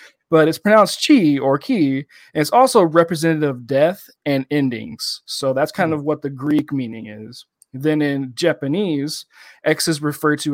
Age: 20-39